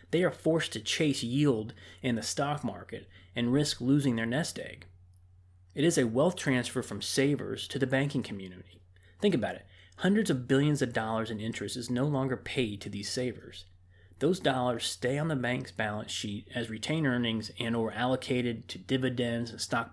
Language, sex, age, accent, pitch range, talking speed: English, male, 30-49, American, 100-135 Hz, 185 wpm